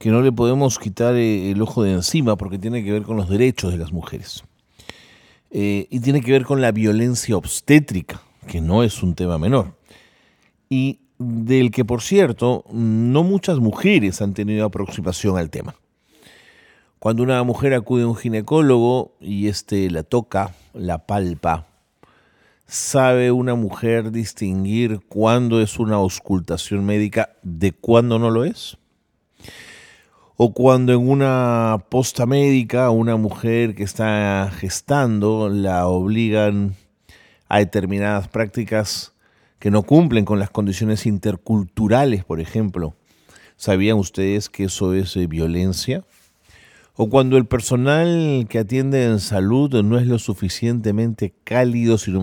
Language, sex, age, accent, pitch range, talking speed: Spanish, male, 40-59, Argentinian, 100-120 Hz, 135 wpm